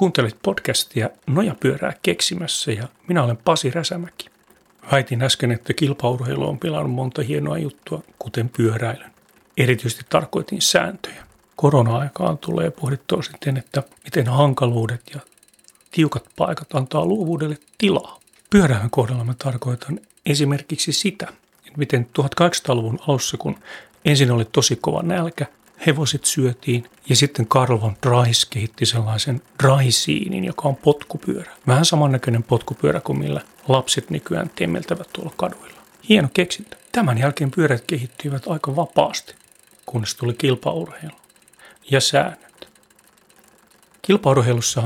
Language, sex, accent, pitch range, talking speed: Finnish, male, native, 125-155 Hz, 120 wpm